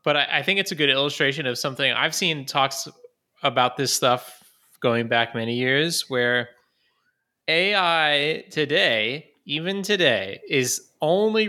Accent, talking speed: American, 135 wpm